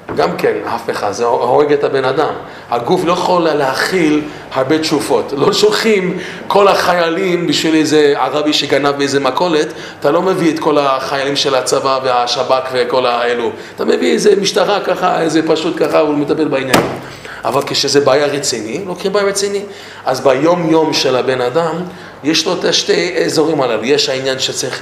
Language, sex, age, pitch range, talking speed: English, male, 30-49, 130-185 Hz, 165 wpm